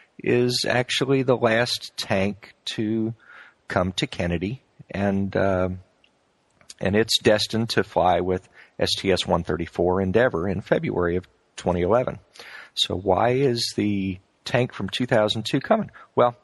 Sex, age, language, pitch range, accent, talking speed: male, 50-69, English, 100-125 Hz, American, 115 wpm